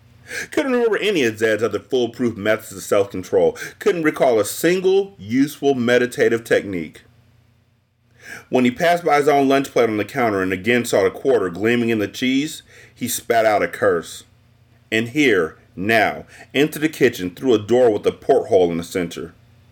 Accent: American